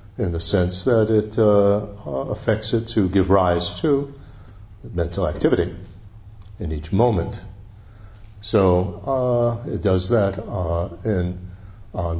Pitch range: 95-110 Hz